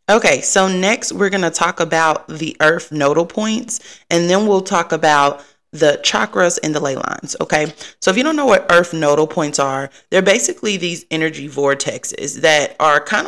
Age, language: 30-49, English